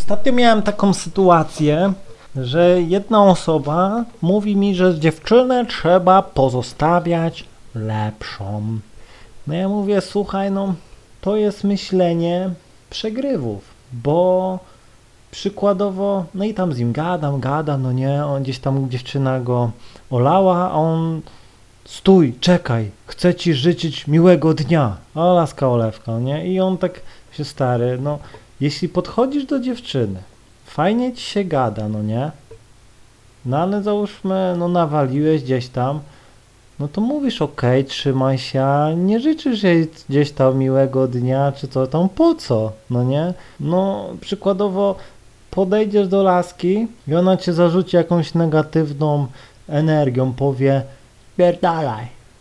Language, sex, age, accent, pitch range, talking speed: Polish, male, 30-49, native, 130-185 Hz, 130 wpm